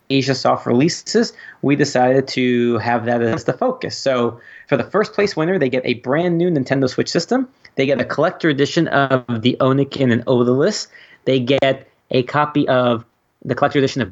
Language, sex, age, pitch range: English, male, 30-49, 125-160 Hz